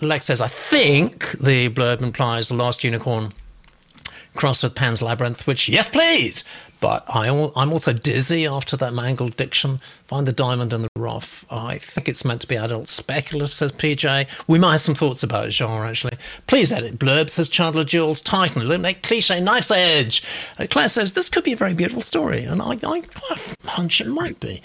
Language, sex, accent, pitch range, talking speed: English, male, British, 115-160 Hz, 195 wpm